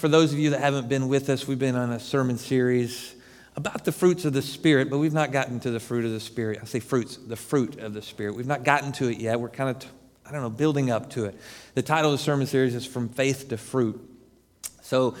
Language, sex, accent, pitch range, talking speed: English, male, American, 120-150 Hz, 265 wpm